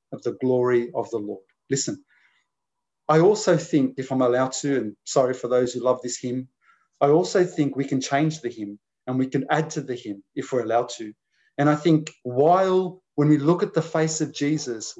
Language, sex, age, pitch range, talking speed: English, male, 30-49, 140-175 Hz, 210 wpm